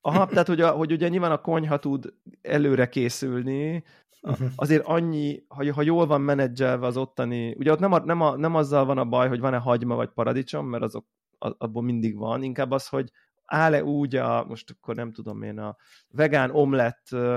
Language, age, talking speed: Hungarian, 30-49, 195 wpm